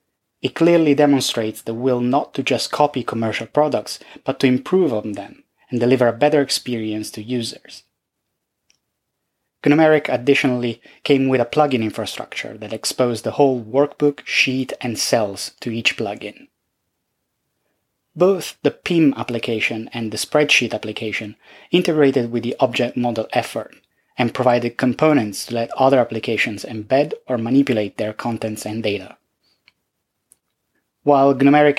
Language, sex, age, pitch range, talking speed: English, male, 20-39, 115-135 Hz, 135 wpm